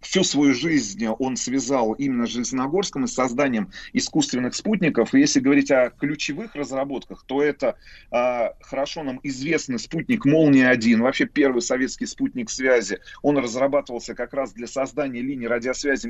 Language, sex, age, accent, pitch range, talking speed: Russian, male, 30-49, native, 120-160 Hz, 145 wpm